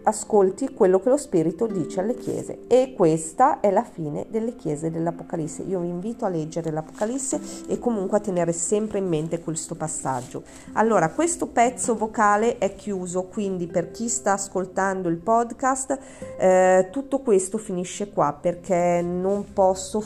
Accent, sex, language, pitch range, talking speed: native, female, Italian, 155-195 Hz, 155 wpm